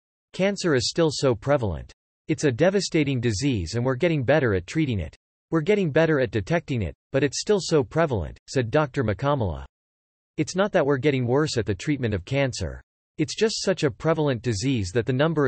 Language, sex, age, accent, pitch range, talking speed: English, male, 40-59, American, 110-150 Hz, 195 wpm